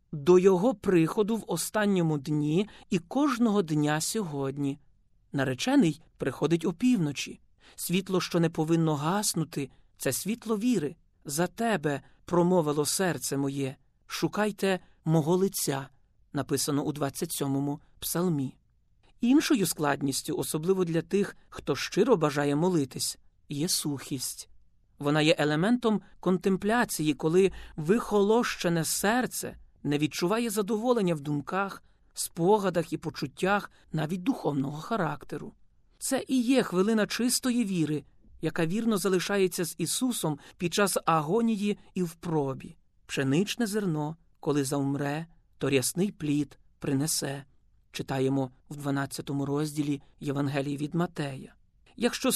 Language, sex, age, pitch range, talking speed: Ukrainian, male, 40-59, 145-200 Hz, 110 wpm